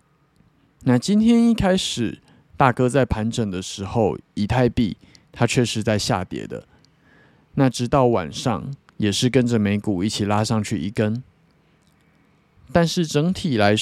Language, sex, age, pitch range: Chinese, male, 20-39, 105-130 Hz